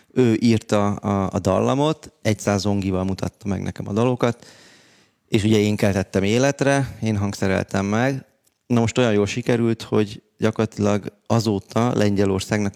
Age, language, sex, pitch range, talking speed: 30-49, Hungarian, male, 95-115 Hz, 130 wpm